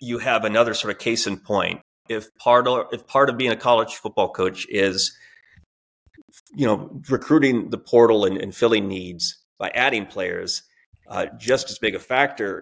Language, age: English, 30-49